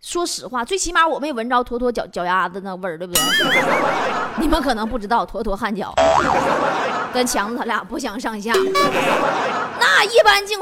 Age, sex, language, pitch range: 20-39, female, Chinese, 225-360 Hz